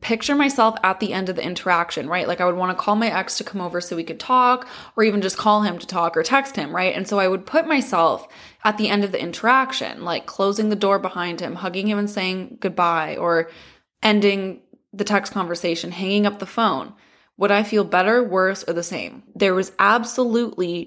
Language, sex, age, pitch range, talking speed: English, female, 20-39, 185-215 Hz, 225 wpm